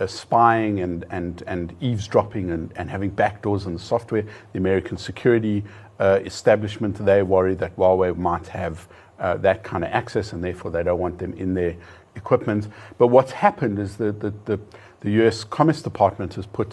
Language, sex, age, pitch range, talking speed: English, male, 50-69, 95-115 Hz, 185 wpm